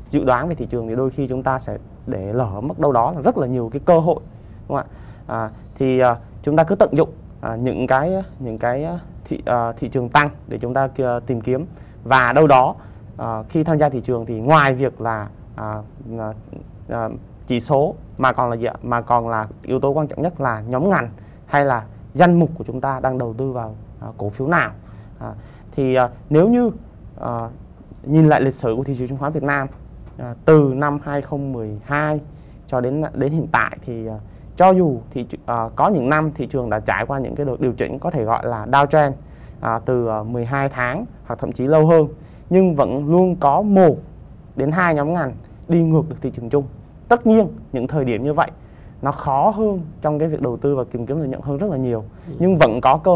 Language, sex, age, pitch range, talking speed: Vietnamese, male, 20-39, 115-150 Hz, 235 wpm